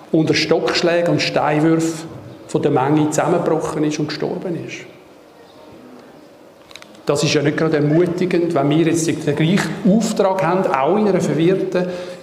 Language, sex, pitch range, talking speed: German, male, 150-175 Hz, 140 wpm